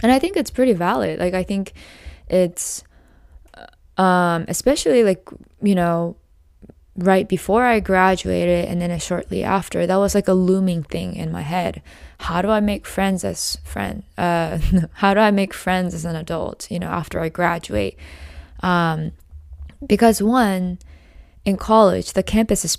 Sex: female